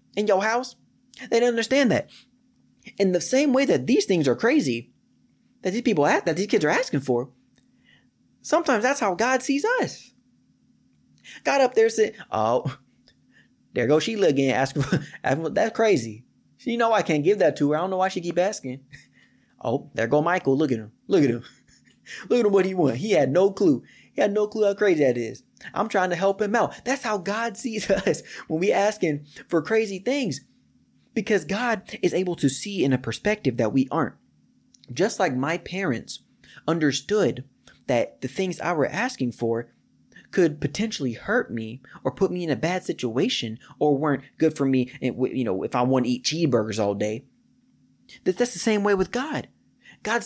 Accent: American